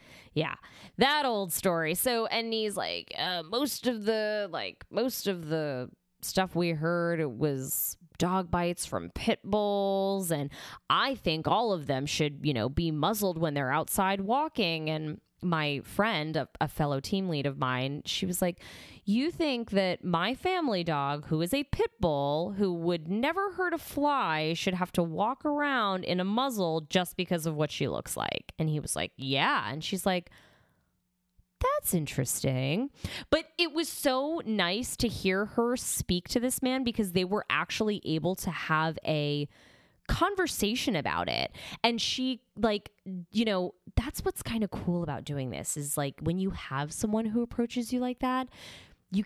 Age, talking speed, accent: 20-39, 175 wpm, American